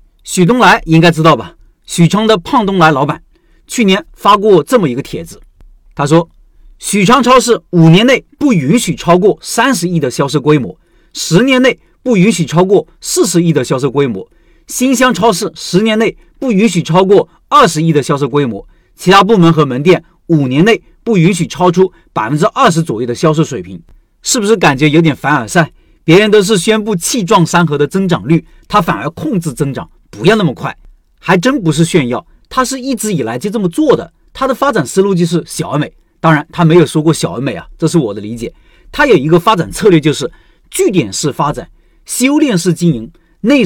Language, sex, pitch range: Chinese, male, 160-225 Hz